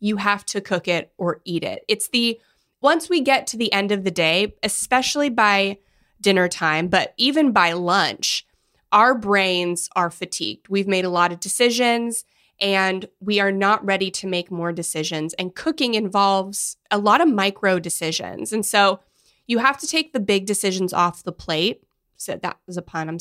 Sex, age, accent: female, 20-39, American